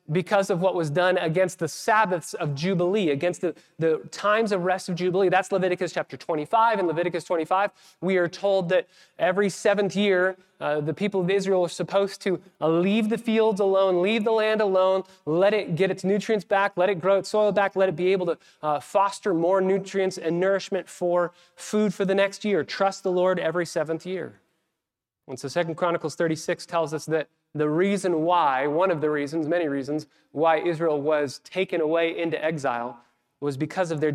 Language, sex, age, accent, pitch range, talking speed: English, male, 30-49, American, 155-195 Hz, 195 wpm